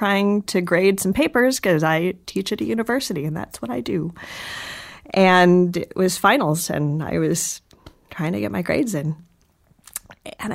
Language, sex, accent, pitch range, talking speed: English, female, American, 180-275 Hz, 170 wpm